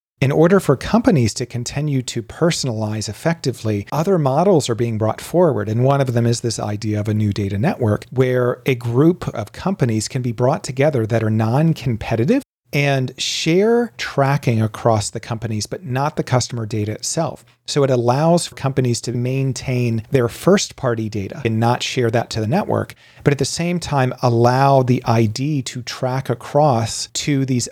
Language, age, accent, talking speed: English, 40-59, American, 175 wpm